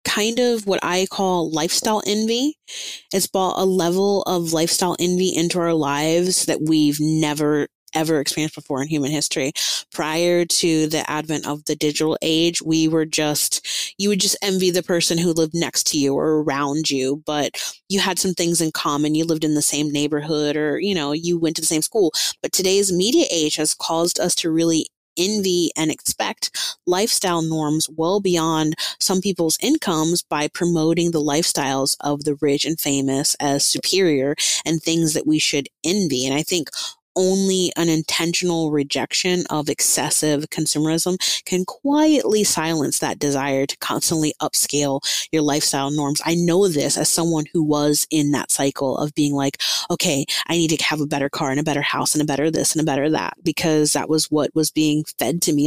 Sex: female